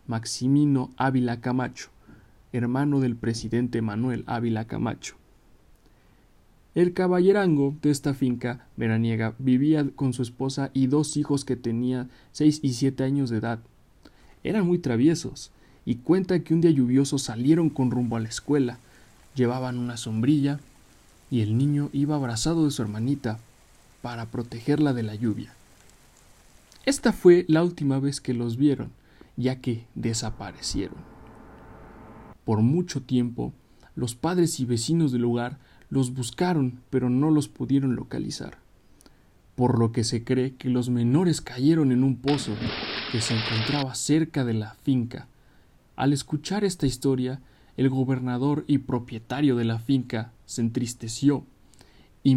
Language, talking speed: Spanish, 140 wpm